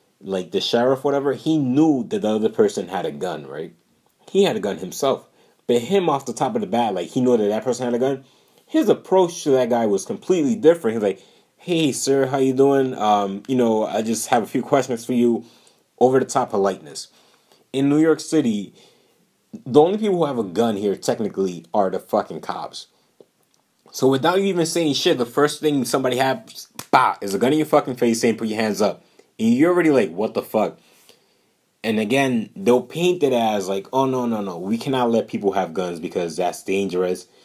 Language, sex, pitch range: English, male, 100-150 Hz